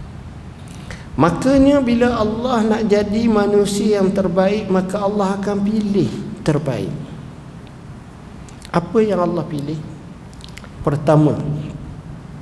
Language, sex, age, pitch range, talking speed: Malay, male, 50-69, 180-220 Hz, 85 wpm